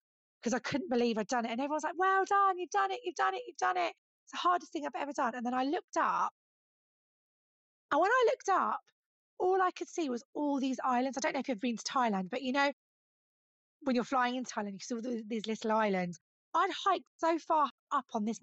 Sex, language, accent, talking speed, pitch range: female, English, British, 245 wpm, 235-320 Hz